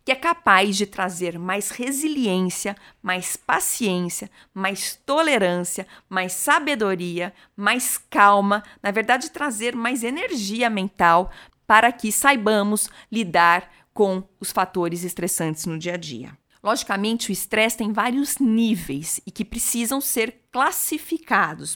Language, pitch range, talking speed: Portuguese, 185-240 Hz, 120 wpm